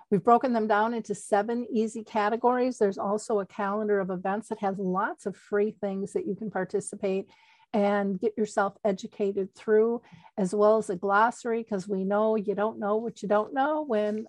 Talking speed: 190 wpm